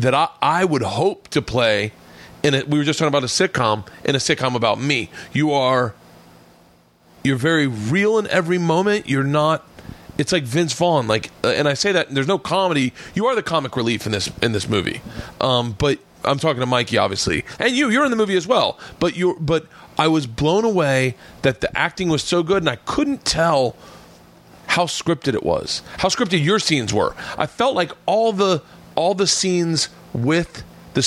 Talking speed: 205 wpm